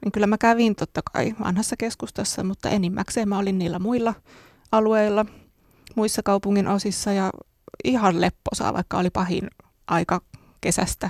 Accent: native